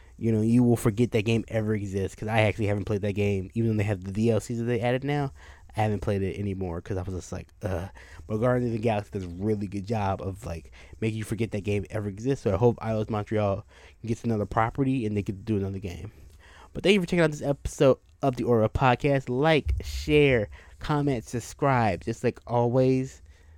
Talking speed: 225 wpm